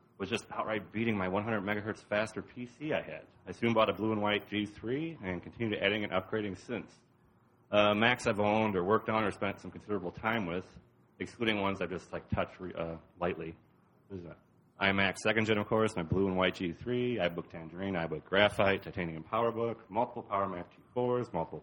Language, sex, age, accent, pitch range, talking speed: English, male, 30-49, American, 90-115 Hz, 195 wpm